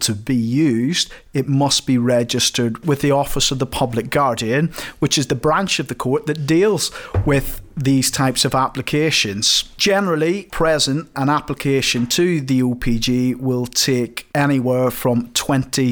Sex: male